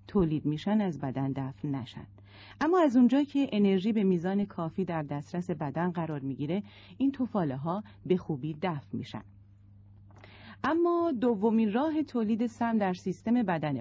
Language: Persian